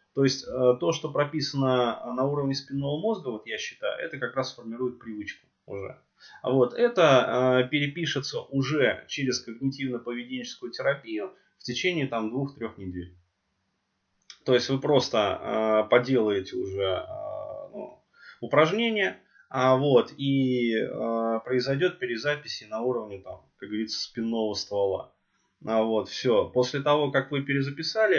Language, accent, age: Russian, native, 20-39